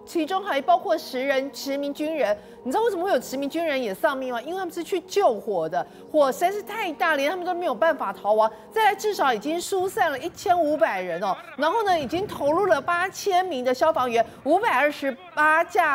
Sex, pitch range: female, 275-350 Hz